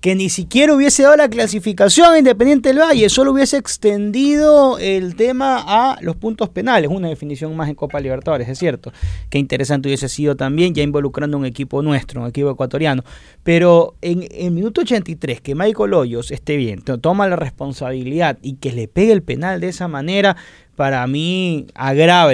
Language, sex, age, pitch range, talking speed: Spanish, male, 20-39, 140-200 Hz, 175 wpm